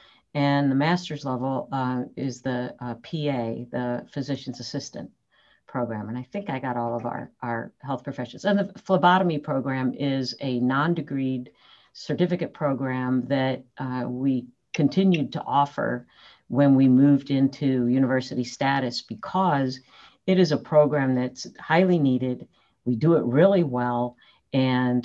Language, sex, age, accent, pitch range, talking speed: English, female, 50-69, American, 125-145 Hz, 145 wpm